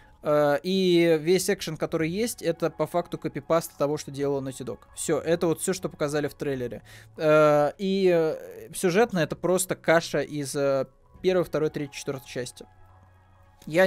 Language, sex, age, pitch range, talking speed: Russian, male, 20-39, 135-165 Hz, 145 wpm